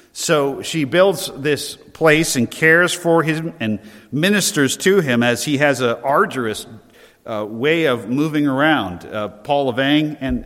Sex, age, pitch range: male, 50-69, 105-130 Hz